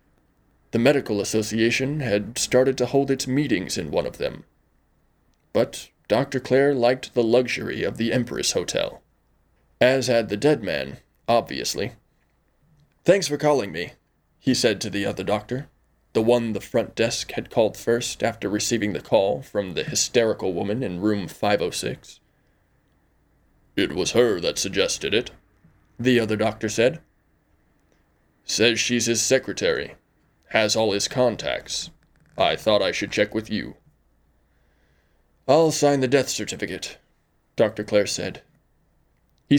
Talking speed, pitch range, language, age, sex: 140 wpm, 105-135 Hz, English, 20-39, male